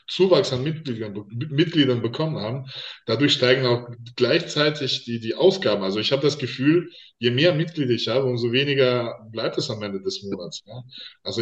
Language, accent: German, German